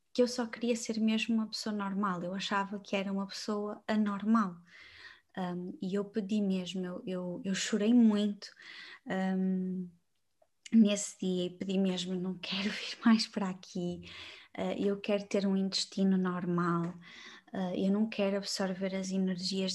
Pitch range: 185-210 Hz